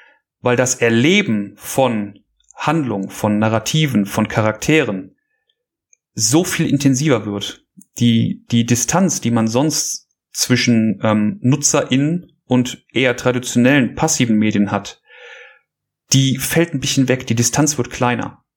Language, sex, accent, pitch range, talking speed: German, male, German, 120-145 Hz, 120 wpm